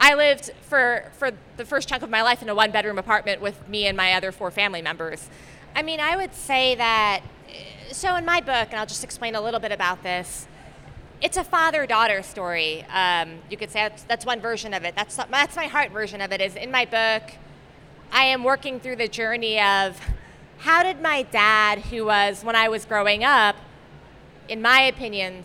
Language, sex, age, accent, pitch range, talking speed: English, female, 20-39, American, 200-250 Hz, 205 wpm